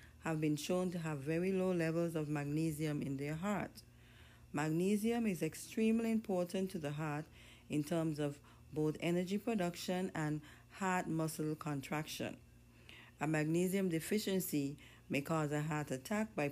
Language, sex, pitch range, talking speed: English, female, 140-180 Hz, 140 wpm